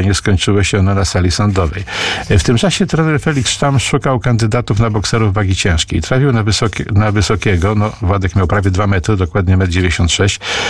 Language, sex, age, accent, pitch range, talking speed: Polish, male, 50-69, native, 95-115 Hz, 180 wpm